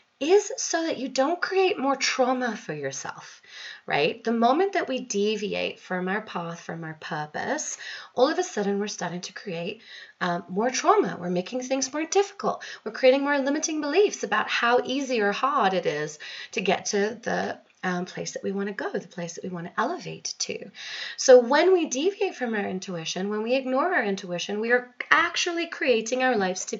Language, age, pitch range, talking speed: English, 30-49, 185-260 Hz, 195 wpm